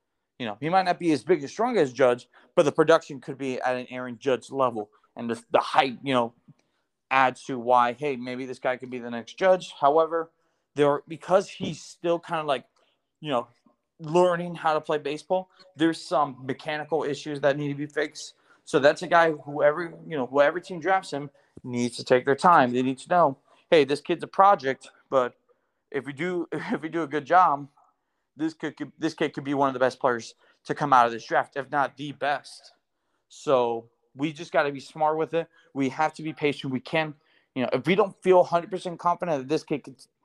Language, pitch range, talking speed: English, 135-170 Hz, 225 wpm